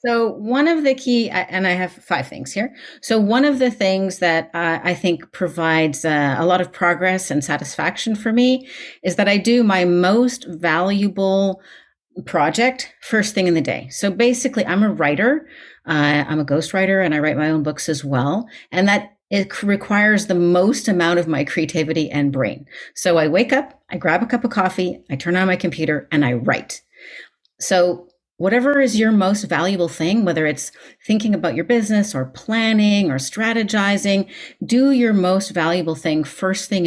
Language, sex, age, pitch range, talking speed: English, female, 40-59, 165-215 Hz, 180 wpm